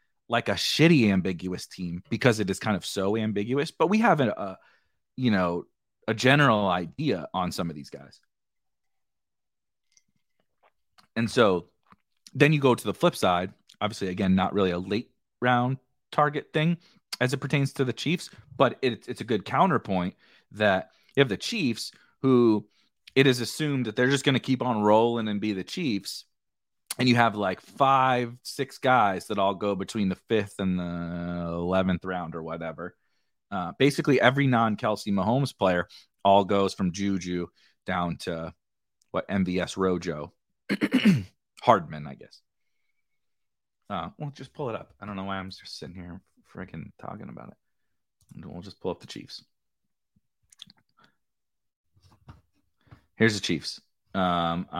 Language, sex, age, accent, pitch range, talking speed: English, male, 30-49, American, 90-130 Hz, 150 wpm